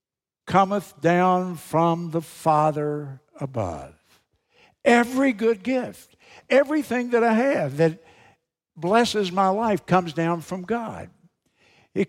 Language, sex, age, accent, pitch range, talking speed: English, male, 60-79, American, 140-195 Hz, 110 wpm